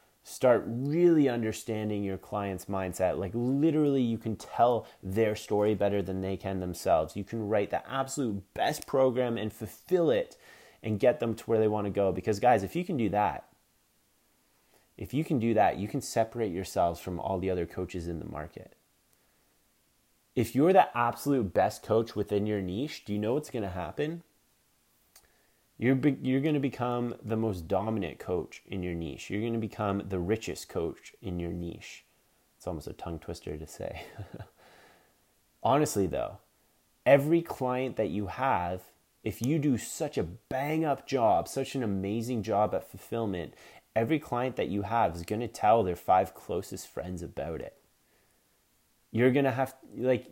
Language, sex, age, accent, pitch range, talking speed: English, male, 30-49, American, 95-130 Hz, 170 wpm